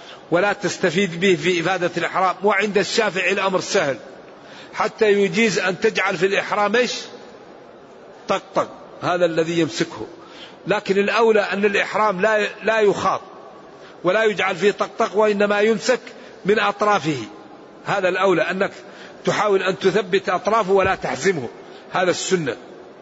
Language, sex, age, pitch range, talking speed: Arabic, male, 50-69, 190-220 Hz, 125 wpm